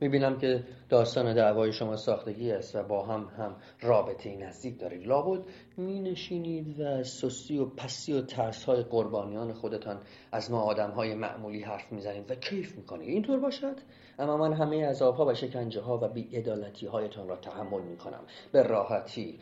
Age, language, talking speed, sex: 40-59, Persian, 175 wpm, male